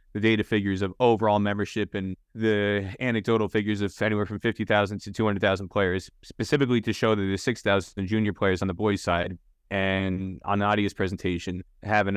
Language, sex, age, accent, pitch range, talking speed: English, male, 20-39, American, 95-110 Hz, 170 wpm